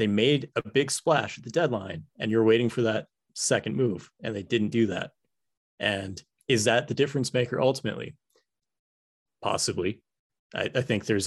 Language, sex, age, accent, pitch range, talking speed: English, male, 30-49, American, 105-120 Hz, 170 wpm